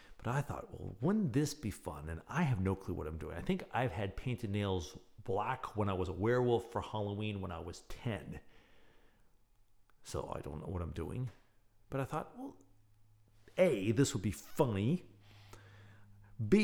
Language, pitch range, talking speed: English, 95-120 Hz, 185 wpm